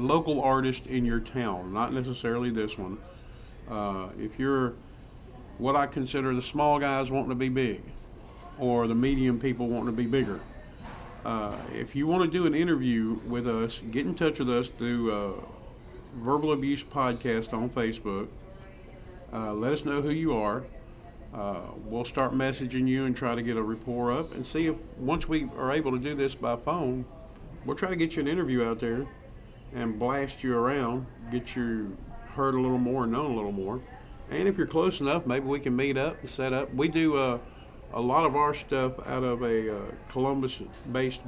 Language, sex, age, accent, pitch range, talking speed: English, male, 50-69, American, 115-135 Hz, 195 wpm